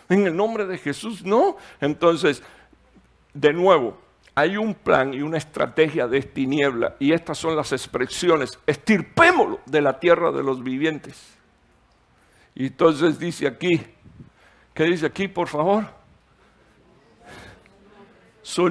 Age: 60-79